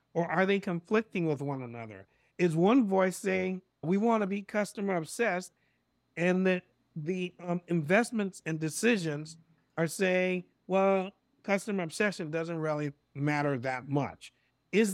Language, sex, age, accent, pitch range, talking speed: English, male, 50-69, American, 150-190 Hz, 140 wpm